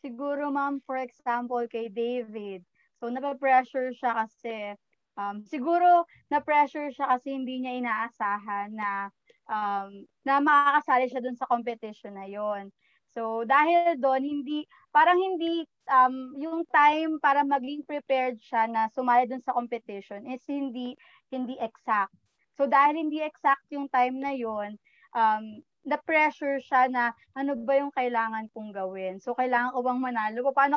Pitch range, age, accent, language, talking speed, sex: 240-300 Hz, 20-39, native, Filipino, 150 wpm, female